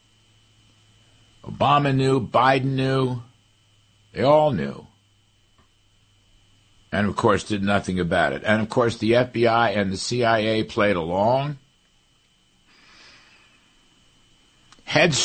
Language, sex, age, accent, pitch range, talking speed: English, male, 60-79, American, 95-120 Hz, 100 wpm